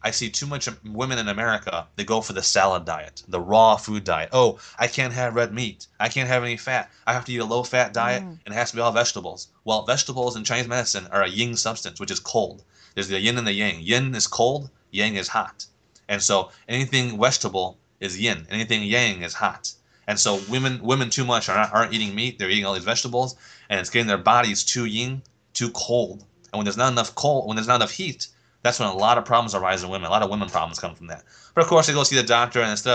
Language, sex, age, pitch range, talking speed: English, male, 20-39, 105-125 Hz, 250 wpm